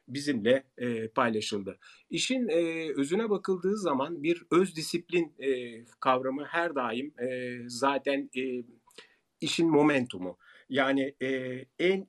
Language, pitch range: Turkish, 120-165 Hz